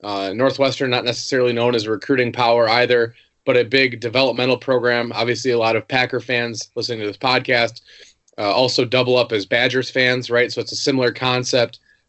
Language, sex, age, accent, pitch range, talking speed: English, male, 30-49, American, 120-135 Hz, 190 wpm